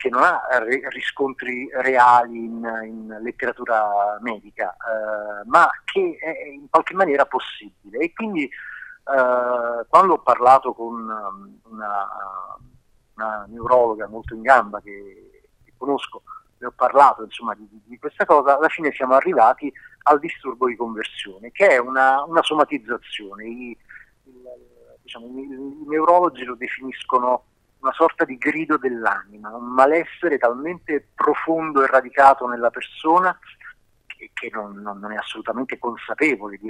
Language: Italian